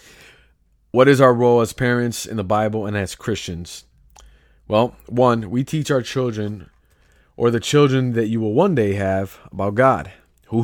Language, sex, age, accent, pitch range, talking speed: English, male, 30-49, American, 100-120 Hz, 170 wpm